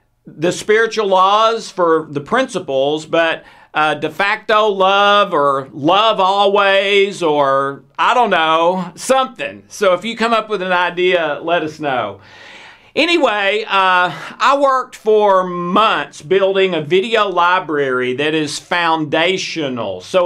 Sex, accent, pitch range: male, American, 160-205 Hz